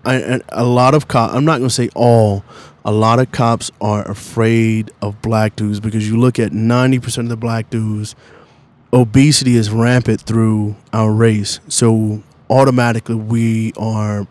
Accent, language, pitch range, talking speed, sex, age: American, English, 110-135 Hz, 160 wpm, male, 20-39